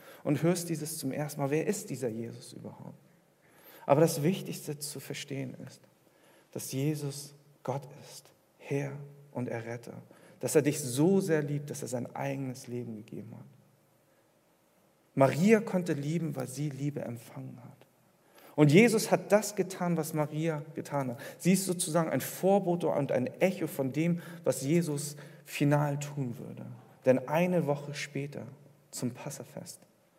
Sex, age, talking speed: male, 50-69, 150 wpm